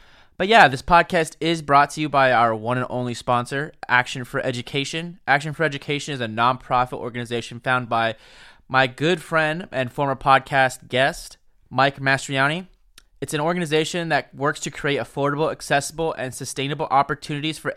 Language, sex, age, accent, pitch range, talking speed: English, male, 20-39, American, 130-155 Hz, 160 wpm